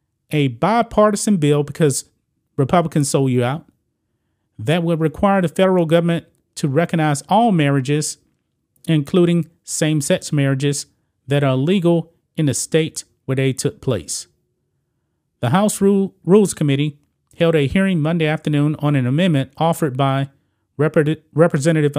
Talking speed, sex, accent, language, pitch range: 135 wpm, male, American, English, 135-165 Hz